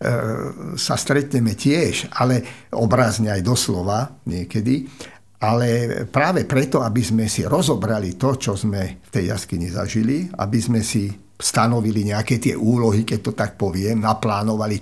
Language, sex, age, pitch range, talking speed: Slovak, male, 50-69, 105-125 Hz, 140 wpm